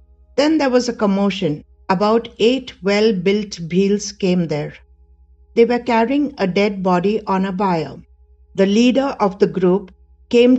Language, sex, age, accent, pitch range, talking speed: English, female, 60-79, Indian, 155-210 Hz, 155 wpm